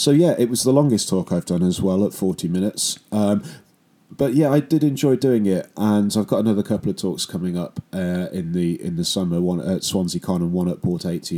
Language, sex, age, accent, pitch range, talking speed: English, male, 30-49, British, 90-120 Hz, 245 wpm